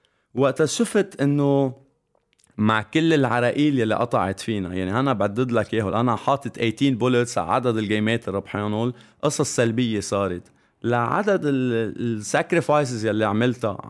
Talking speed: 120 wpm